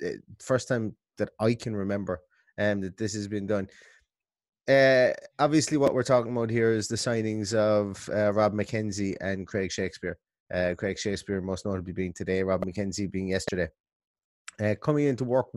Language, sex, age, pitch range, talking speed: English, male, 20-39, 105-125 Hz, 175 wpm